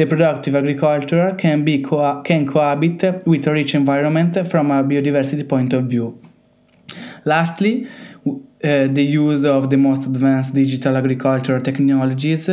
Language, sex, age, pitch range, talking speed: Italian, male, 20-39, 140-165 Hz, 140 wpm